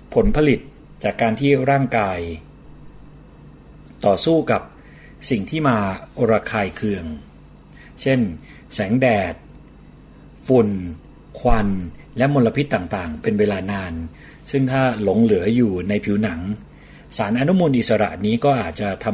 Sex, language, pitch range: male, Thai, 95-120 Hz